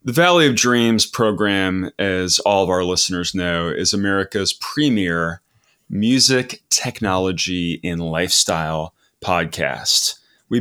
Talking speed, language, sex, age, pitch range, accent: 115 wpm, English, male, 30-49, 85-115 Hz, American